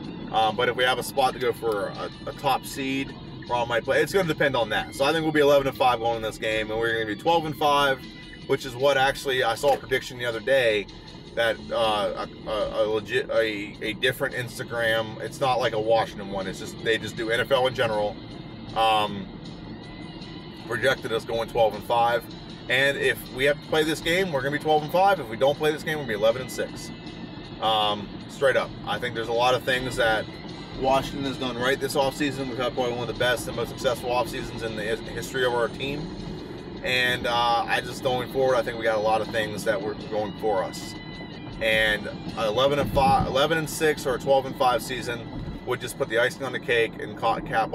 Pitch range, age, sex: 115-150 Hz, 30-49, male